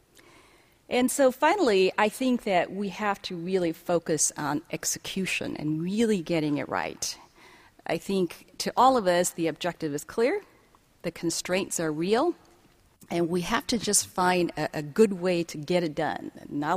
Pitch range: 165-220 Hz